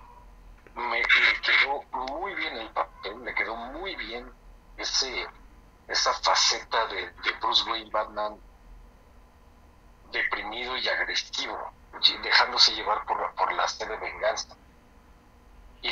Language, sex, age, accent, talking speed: Spanish, male, 50-69, Mexican, 115 wpm